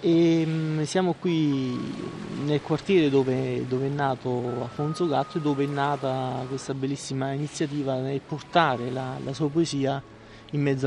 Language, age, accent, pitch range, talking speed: Italian, 30-49, native, 135-165 Hz, 145 wpm